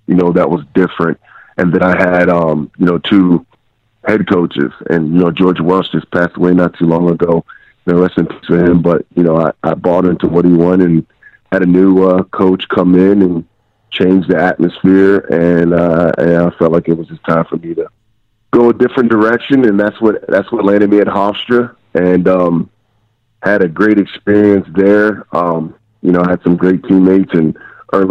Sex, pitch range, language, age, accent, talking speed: male, 90-105 Hz, English, 30-49, American, 210 wpm